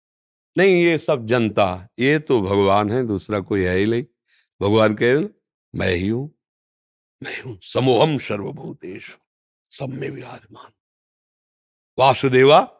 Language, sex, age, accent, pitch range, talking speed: English, male, 50-69, Indian, 105-150 Hz, 130 wpm